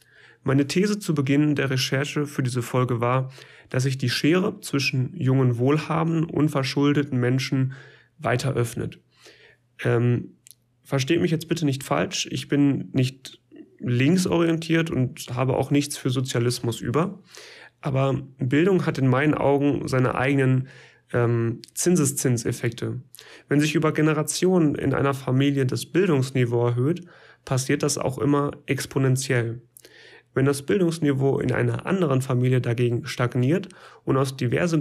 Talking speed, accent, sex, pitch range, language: 135 wpm, German, male, 125-150 Hz, German